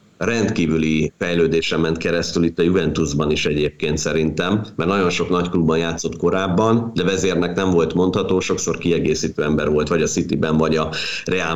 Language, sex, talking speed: Hungarian, male, 170 wpm